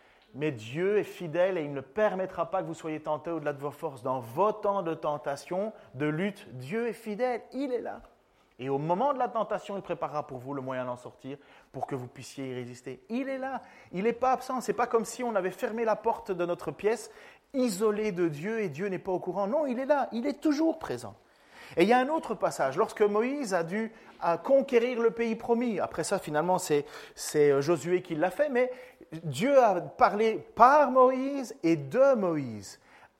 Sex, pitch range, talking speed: male, 150-230 Hz, 220 wpm